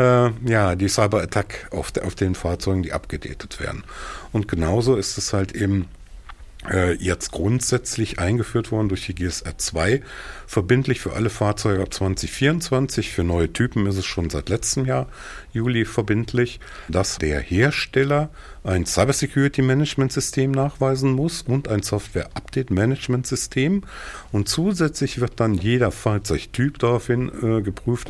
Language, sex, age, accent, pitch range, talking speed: German, male, 50-69, German, 95-125 Hz, 135 wpm